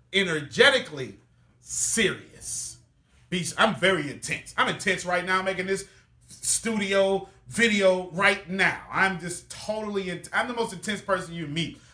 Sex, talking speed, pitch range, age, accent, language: male, 140 wpm, 145-200 Hz, 30-49, American, English